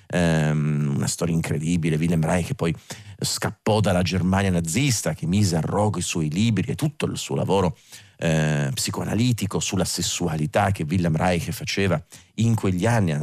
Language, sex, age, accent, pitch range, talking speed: Italian, male, 40-59, native, 85-115 Hz, 155 wpm